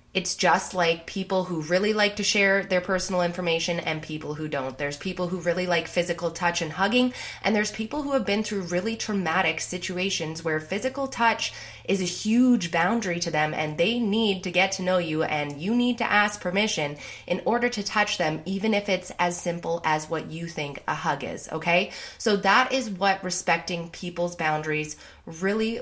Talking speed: 195 wpm